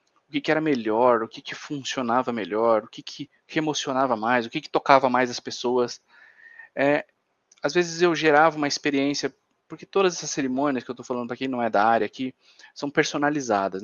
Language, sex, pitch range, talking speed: Portuguese, male, 125-165 Hz, 180 wpm